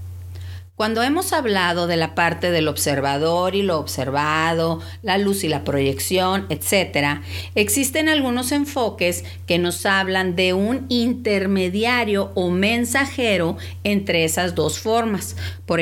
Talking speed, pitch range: 125 wpm, 135-215 Hz